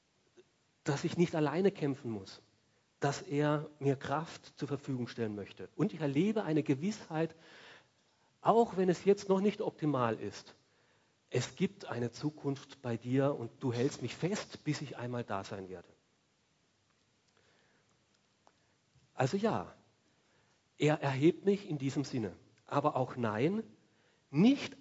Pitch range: 120-160 Hz